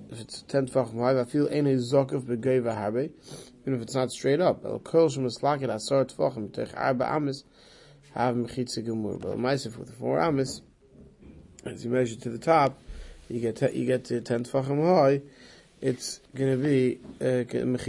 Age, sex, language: 30-49, male, English